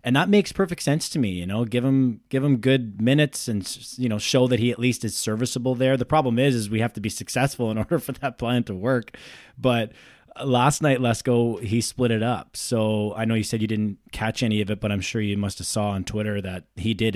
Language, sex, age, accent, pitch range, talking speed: English, male, 20-39, American, 105-120 Hz, 255 wpm